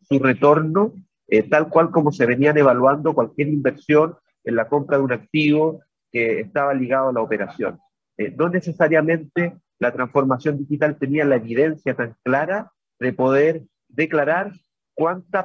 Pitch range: 130-155 Hz